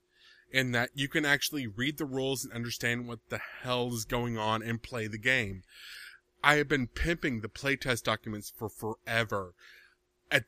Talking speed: 170 wpm